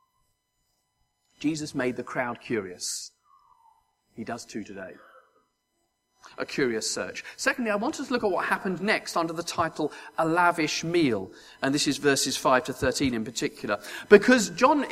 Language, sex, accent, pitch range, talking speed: English, male, British, 145-215 Hz, 155 wpm